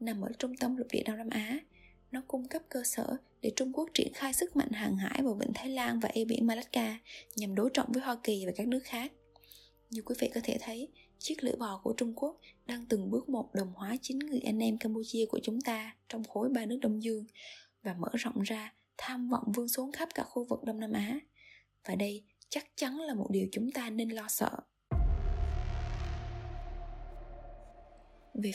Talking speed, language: 210 wpm, Vietnamese